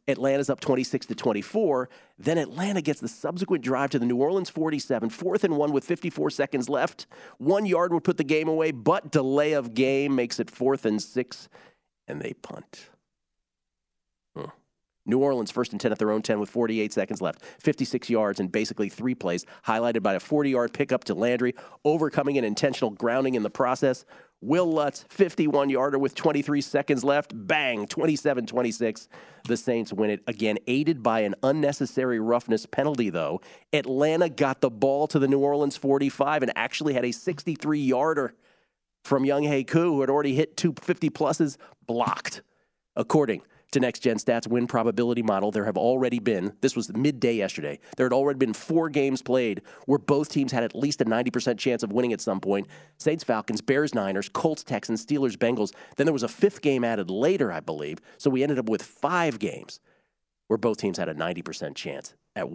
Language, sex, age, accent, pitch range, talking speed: English, male, 40-59, American, 115-145 Hz, 180 wpm